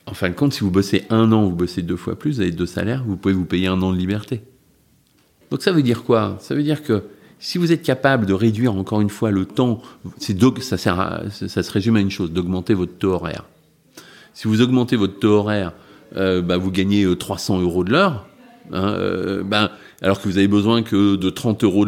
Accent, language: French, French